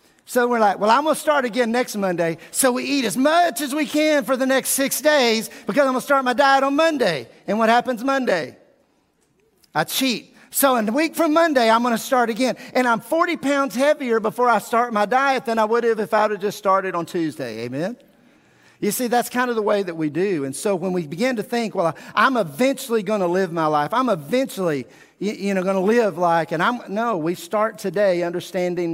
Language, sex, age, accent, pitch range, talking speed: English, male, 50-69, American, 155-245 Hz, 230 wpm